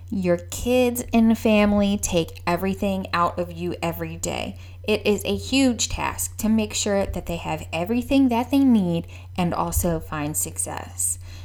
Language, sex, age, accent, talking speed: English, female, 10-29, American, 155 wpm